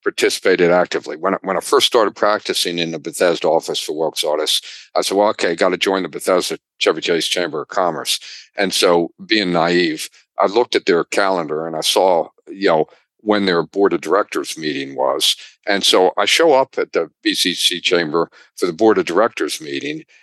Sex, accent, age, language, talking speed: male, American, 50-69, English, 195 wpm